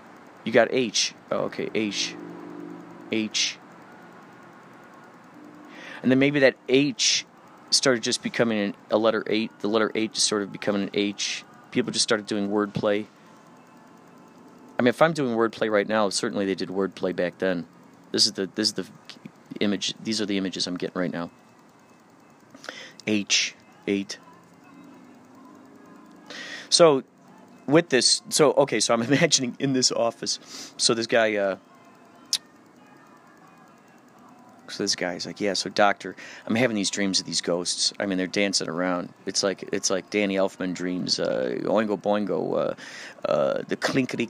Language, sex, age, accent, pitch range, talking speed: English, male, 30-49, American, 100-125 Hz, 150 wpm